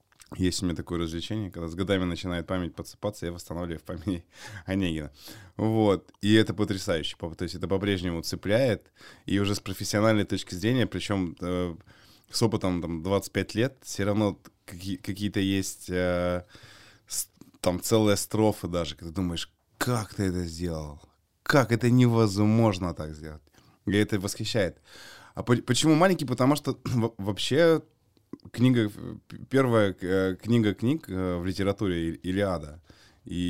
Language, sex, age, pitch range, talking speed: Russian, male, 20-39, 90-110 Hz, 130 wpm